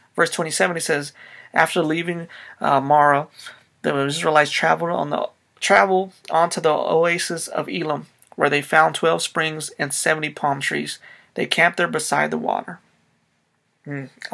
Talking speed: 145 wpm